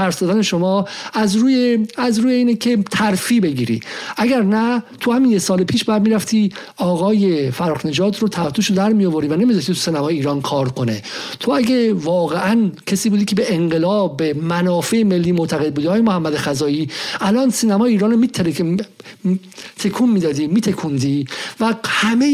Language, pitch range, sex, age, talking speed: Persian, 175-245 Hz, male, 50-69, 155 wpm